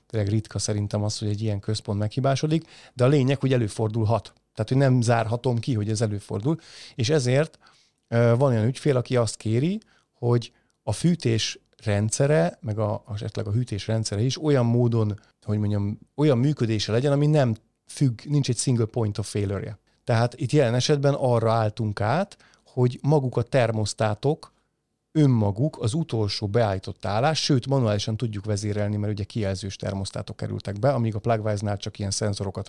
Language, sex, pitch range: Hungarian, male, 105-140 Hz